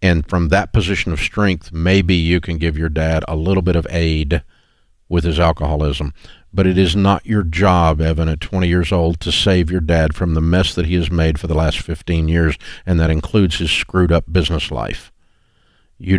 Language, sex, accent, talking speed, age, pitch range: English, male, American, 210 wpm, 50-69, 80-100 Hz